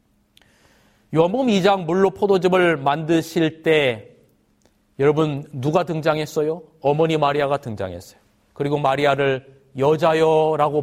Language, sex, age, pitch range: Korean, male, 40-59, 145-185 Hz